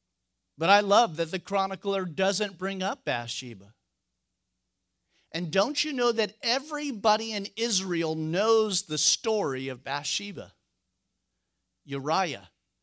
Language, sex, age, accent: English, male, 50-69, American